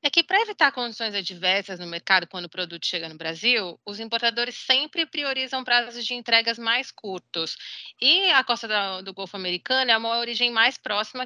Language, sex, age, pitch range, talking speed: English, female, 30-49, 185-240 Hz, 180 wpm